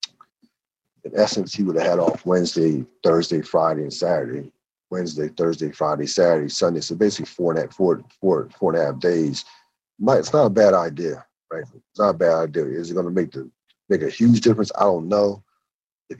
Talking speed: 205 wpm